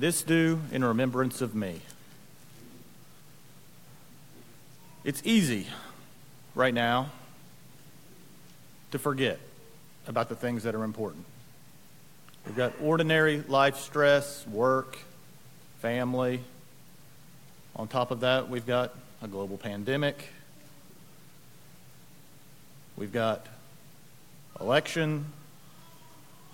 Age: 40-59